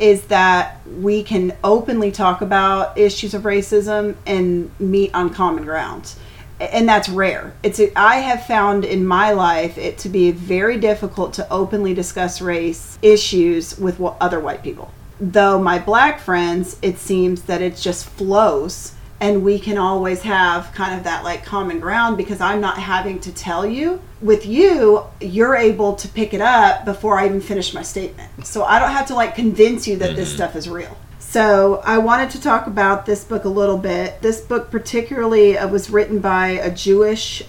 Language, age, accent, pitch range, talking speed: English, 30-49, American, 180-210 Hz, 180 wpm